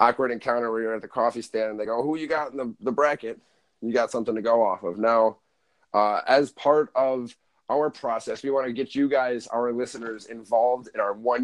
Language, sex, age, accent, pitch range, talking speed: English, male, 30-49, American, 110-130 Hz, 235 wpm